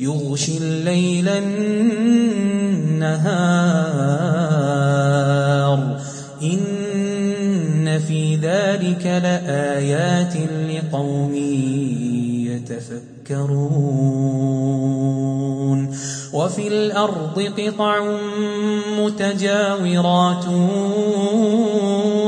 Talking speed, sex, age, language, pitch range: 35 wpm, male, 30-49, Arabic, 145-200 Hz